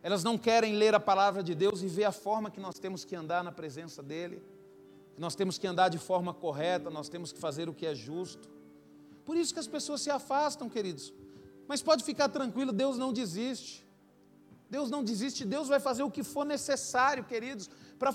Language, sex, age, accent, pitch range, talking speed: Portuguese, male, 40-59, Brazilian, 205-280 Hz, 205 wpm